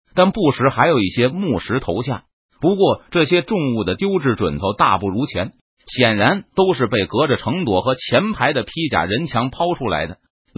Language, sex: Chinese, male